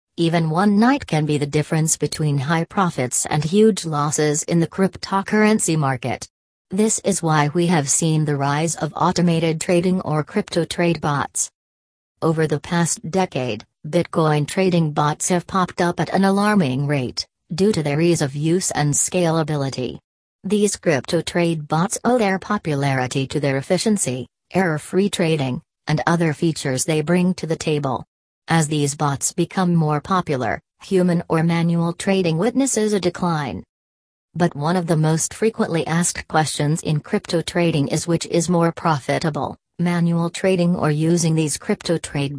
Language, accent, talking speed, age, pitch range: English, American, 155 wpm, 40-59, 150-180 Hz